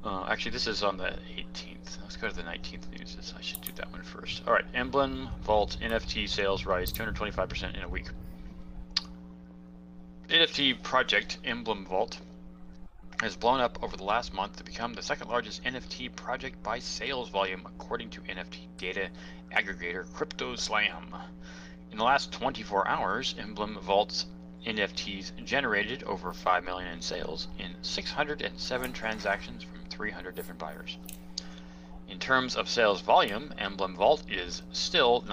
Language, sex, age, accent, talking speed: English, male, 30-49, American, 160 wpm